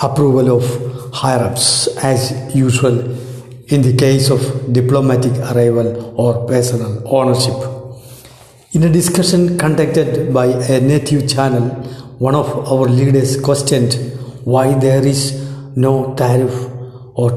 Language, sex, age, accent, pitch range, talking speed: Malayalam, male, 50-69, native, 125-145 Hz, 115 wpm